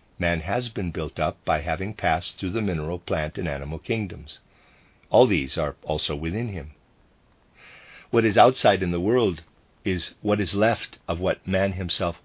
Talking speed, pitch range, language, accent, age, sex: 170 wpm, 80-105 Hz, English, American, 50-69, male